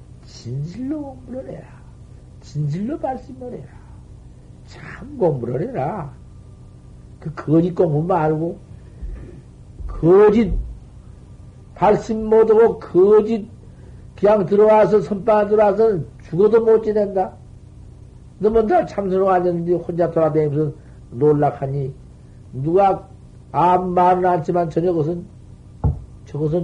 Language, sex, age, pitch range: Korean, male, 60-79, 140-195 Hz